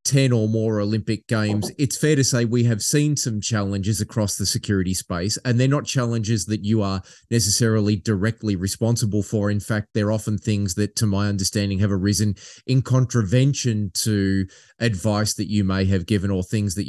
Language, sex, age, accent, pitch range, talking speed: English, male, 30-49, Australian, 100-115 Hz, 185 wpm